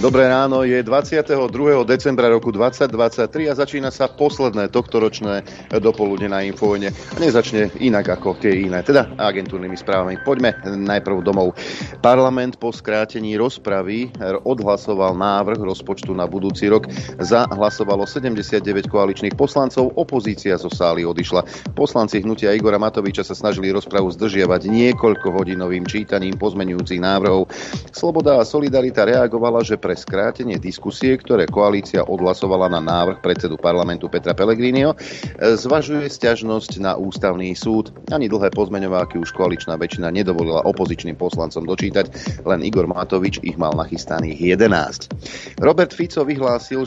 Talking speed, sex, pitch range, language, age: 125 wpm, male, 95-120 Hz, Slovak, 40-59